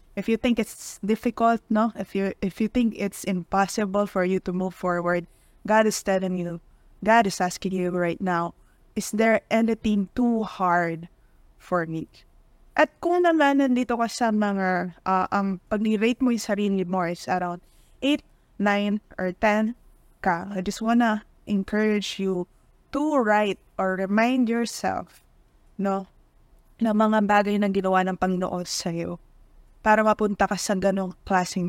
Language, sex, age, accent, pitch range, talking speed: Filipino, female, 20-39, native, 185-220 Hz, 155 wpm